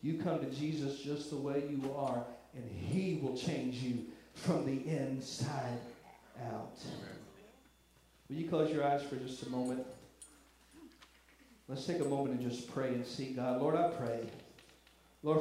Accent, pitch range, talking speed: American, 130-160 Hz, 160 wpm